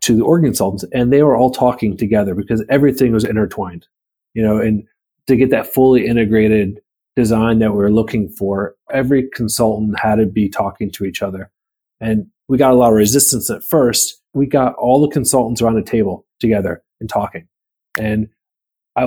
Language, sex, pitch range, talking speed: English, male, 105-130 Hz, 185 wpm